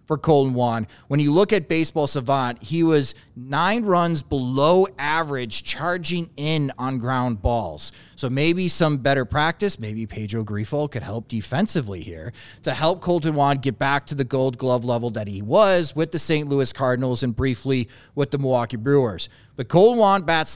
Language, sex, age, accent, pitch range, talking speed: English, male, 30-49, American, 125-165 Hz, 180 wpm